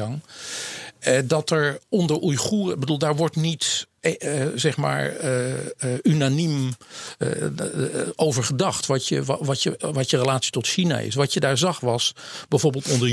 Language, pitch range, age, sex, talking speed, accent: Dutch, 125-155 Hz, 50-69, male, 155 wpm, Dutch